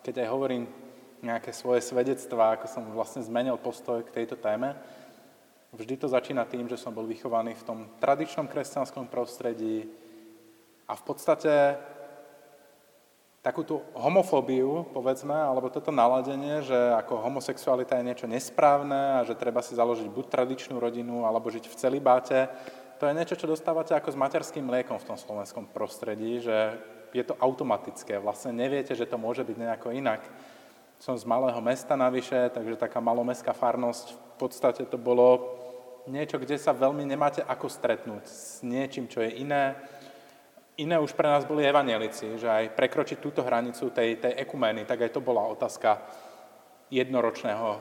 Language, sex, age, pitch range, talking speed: Slovak, male, 20-39, 115-135 Hz, 155 wpm